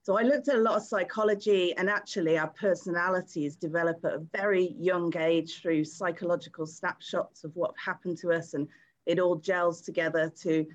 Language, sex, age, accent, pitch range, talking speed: English, female, 40-59, British, 160-195 Hz, 180 wpm